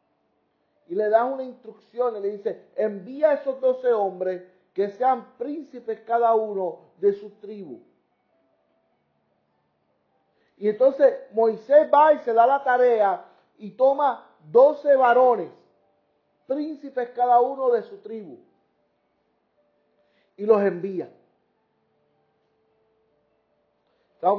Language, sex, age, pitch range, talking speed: Spanish, male, 50-69, 195-255 Hz, 110 wpm